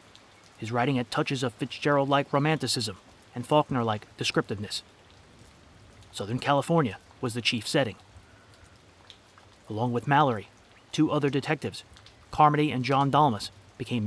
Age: 30-49